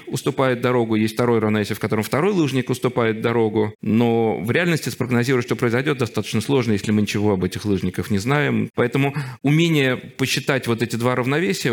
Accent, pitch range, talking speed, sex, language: native, 100-125 Hz, 175 wpm, male, Russian